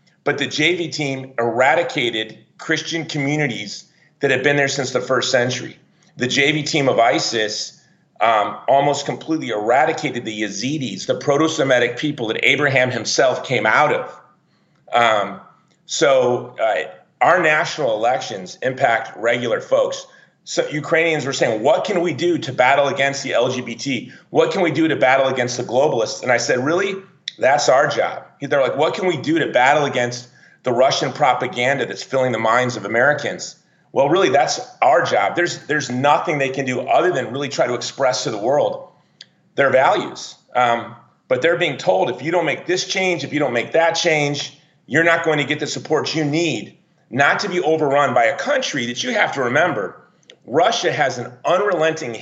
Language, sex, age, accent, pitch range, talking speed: English, male, 40-59, American, 125-165 Hz, 180 wpm